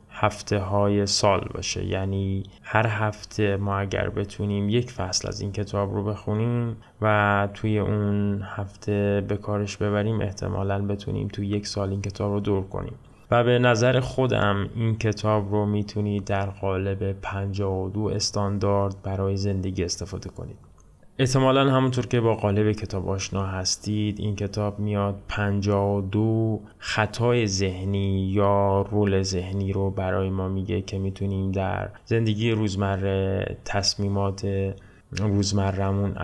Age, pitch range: 20-39, 95-105 Hz